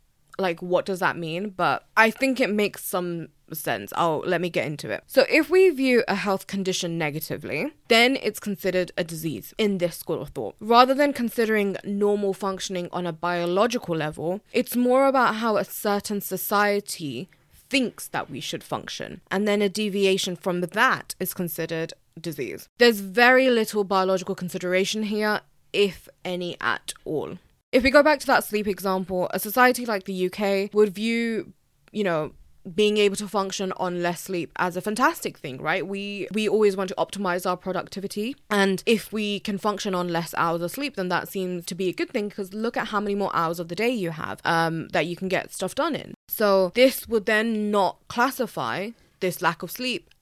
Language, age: English, 20-39